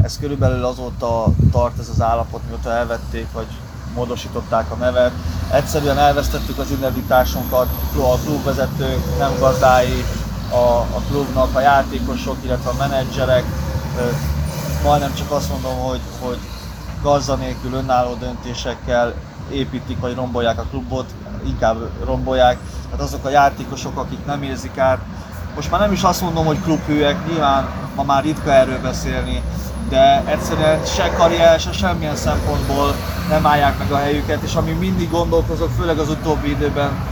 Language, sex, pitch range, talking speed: Hungarian, male, 85-140 Hz, 140 wpm